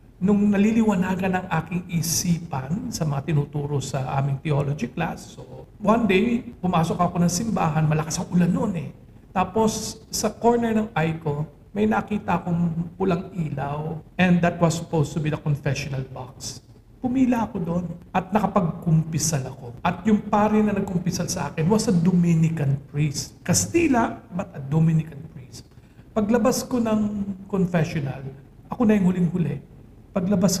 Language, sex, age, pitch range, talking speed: Filipino, male, 50-69, 145-190 Hz, 145 wpm